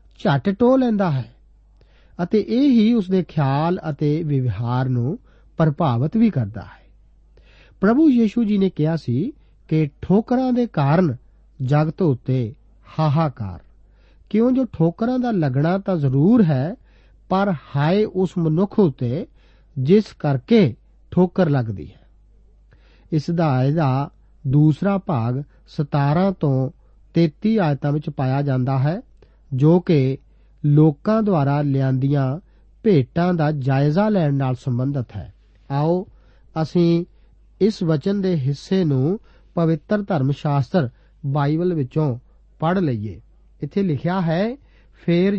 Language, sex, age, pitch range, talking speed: Punjabi, male, 50-69, 135-190 Hz, 110 wpm